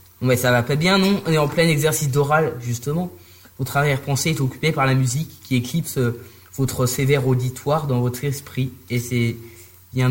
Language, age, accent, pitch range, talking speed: French, 20-39, French, 115-140 Hz, 185 wpm